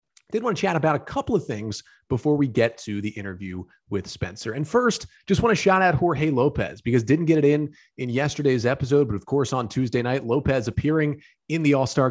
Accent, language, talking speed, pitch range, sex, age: American, English, 225 wpm, 110-155 Hz, male, 30-49